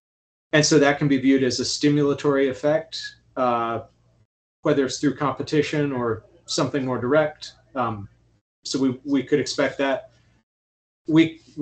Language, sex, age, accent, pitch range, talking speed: English, male, 30-49, American, 115-145 Hz, 140 wpm